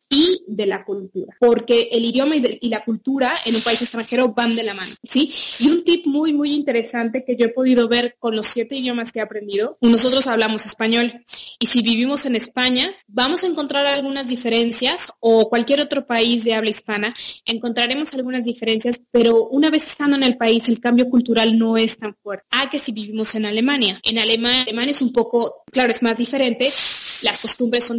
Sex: female